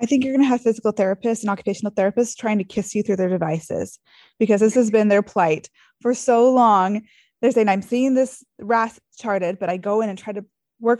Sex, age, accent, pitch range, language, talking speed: female, 20-39, American, 190-225 Hz, English, 230 wpm